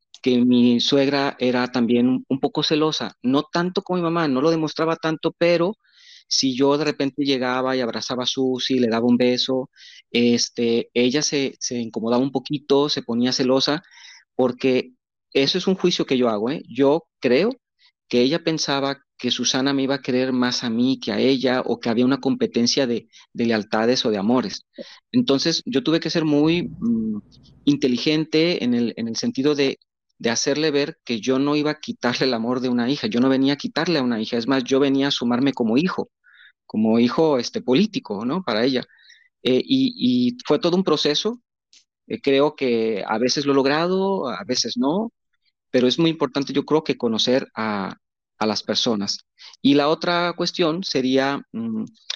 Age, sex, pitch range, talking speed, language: 40-59, male, 125-165 Hz, 190 wpm, Spanish